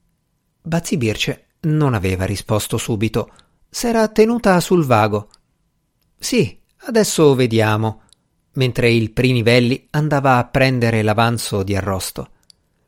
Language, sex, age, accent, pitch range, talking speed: Italian, male, 50-69, native, 115-160 Hz, 105 wpm